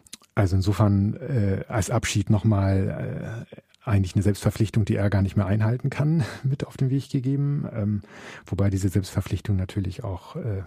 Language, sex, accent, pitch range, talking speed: German, male, German, 90-105 Hz, 155 wpm